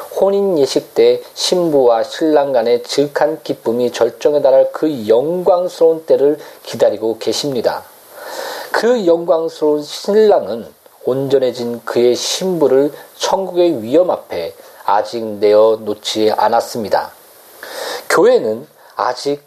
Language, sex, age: Korean, male, 40-59